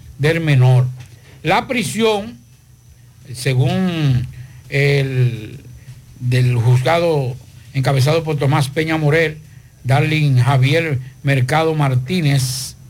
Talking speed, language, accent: 80 wpm, Spanish, American